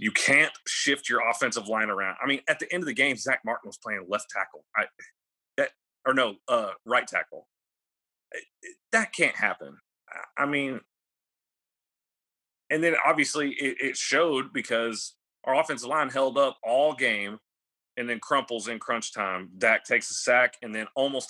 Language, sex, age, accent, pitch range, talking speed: English, male, 30-49, American, 110-140 Hz, 170 wpm